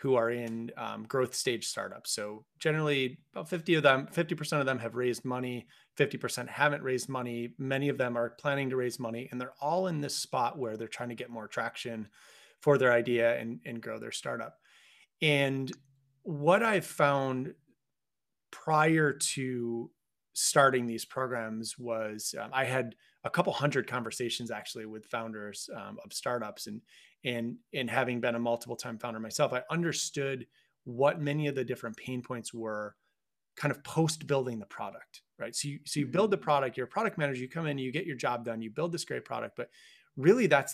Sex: male